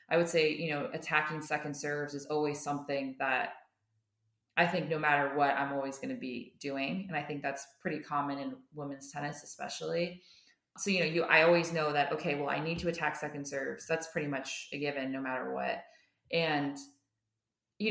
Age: 20-39